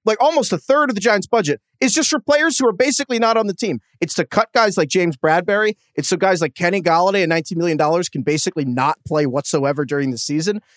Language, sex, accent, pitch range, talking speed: English, male, American, 155-240 Hz, 240 wpm